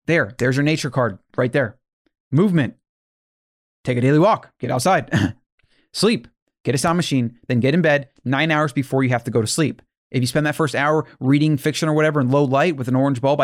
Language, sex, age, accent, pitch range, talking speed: English, male, 30-49, American, 125-160 Hz, 220 wpm